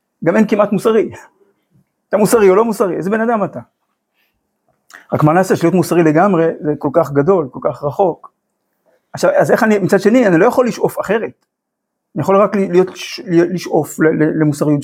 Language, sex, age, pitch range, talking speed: Hebrew, male, 50-69, 145-200 Hz, 180 wpm